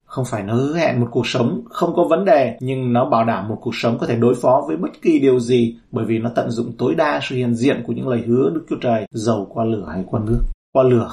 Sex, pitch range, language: male, 115-140 Hz, Vietnamese